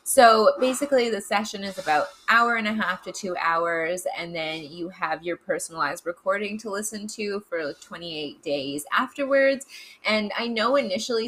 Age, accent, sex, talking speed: 20-39, American, female, 170 wpm